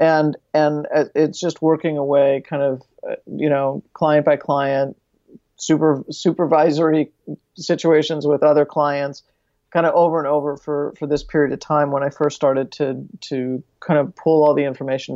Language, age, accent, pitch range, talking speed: English, 50-69, American, 145-160 Hz, 165 wpm